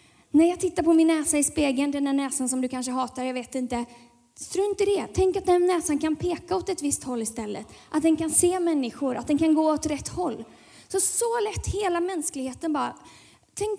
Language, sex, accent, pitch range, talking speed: Swedish, female, native, 250-330 Hz, 220 wpm